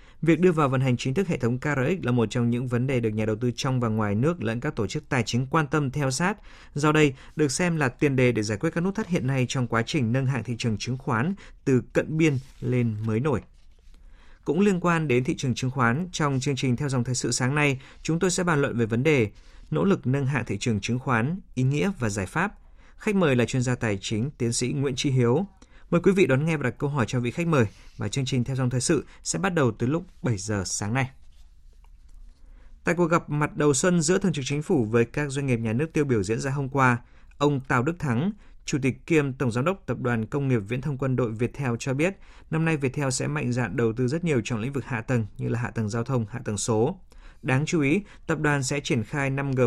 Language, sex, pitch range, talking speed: Vietnamese, male, 115-150 Hz, 265 wpm